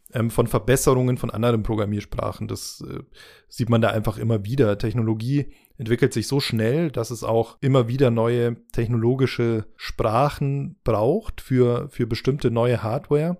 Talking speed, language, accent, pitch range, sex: 145 wpm, German, German, 115-130 Hz, male